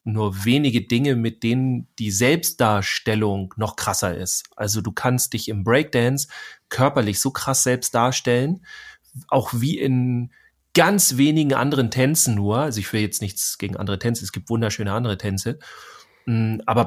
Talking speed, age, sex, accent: 155 wpm, 30-49, male, German